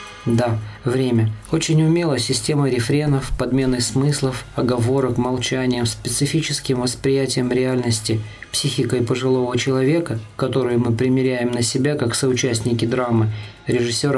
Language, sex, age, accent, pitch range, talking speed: Russian, male, 20-39, native, 120-140 Hz, 105 wpm